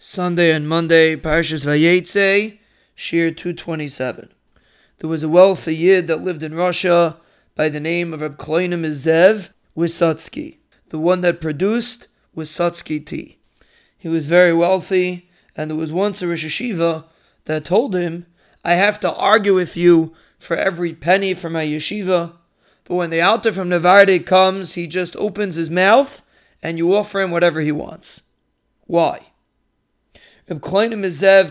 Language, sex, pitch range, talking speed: English, male, 165-200 Hz, 145 wpm